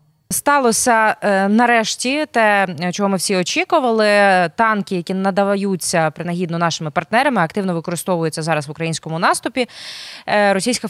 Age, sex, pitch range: 20-39, female, 185-240 Hz